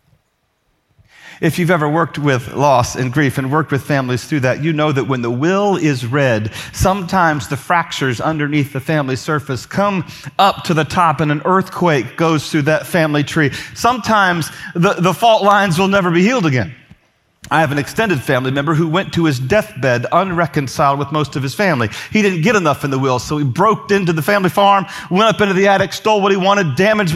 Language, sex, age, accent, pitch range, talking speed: English, male, 40-59, American, 135-190 Hz, 205 wpm